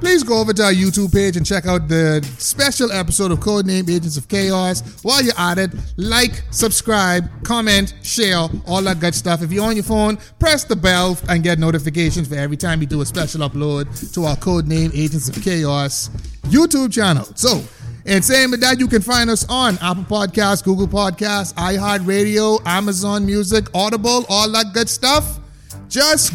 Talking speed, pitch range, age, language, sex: 180 wpm, 160-215 Hz, 30-49, English, male